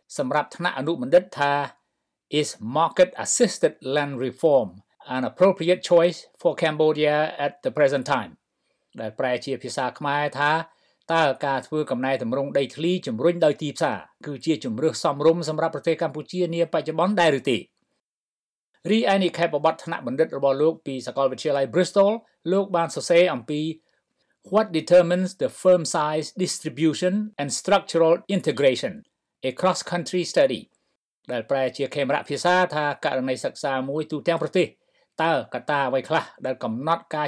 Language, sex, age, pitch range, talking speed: English, male, 60-79, 140-175 Hz, 50 wpm